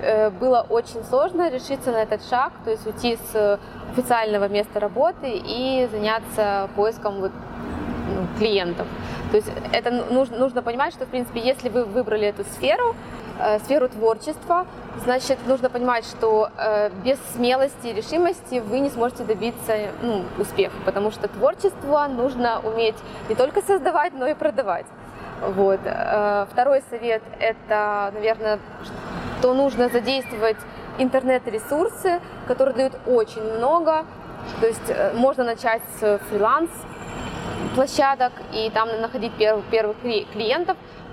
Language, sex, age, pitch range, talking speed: Russian, female, 20-39, 215-260 Hz, 120 wpm